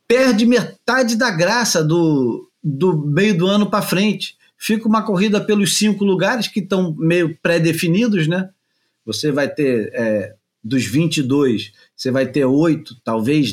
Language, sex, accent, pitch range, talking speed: Portuguese, male, Brazilian, 145-215 Hz, 145 wpm